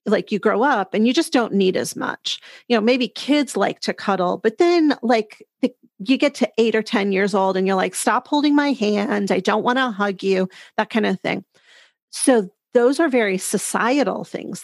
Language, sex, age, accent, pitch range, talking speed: English, female, 40-59, American, 195-240 Hz, 215 wpm